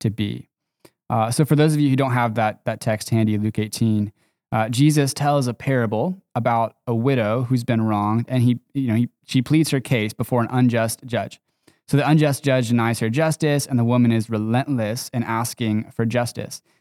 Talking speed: 195 wpm